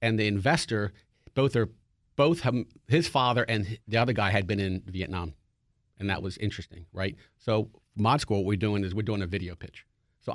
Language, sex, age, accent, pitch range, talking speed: English, male, 40-59, American, 100-125 Hz, 205 wpm